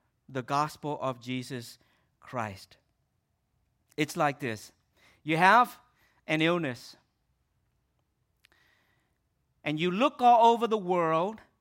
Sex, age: male, 50-69